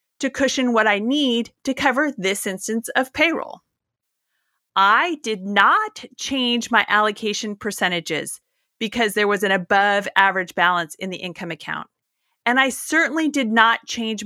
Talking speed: 145 wpm